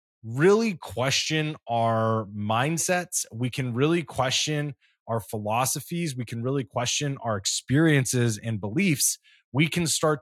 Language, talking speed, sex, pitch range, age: English, 125 wpm, male, 110-145 Hz, 20-39